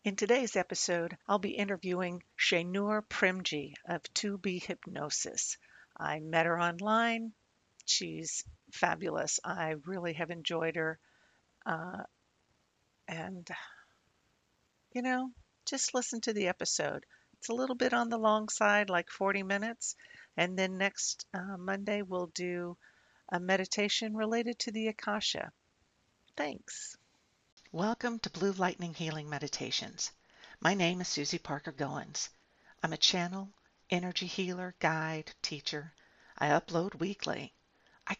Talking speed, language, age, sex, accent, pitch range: 125 wpm, English, 50-69, female, American, 165-210 Hz